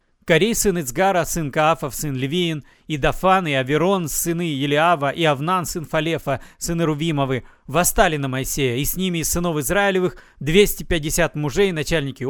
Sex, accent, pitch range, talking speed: male, native, 160-220 Hz, 150 wpm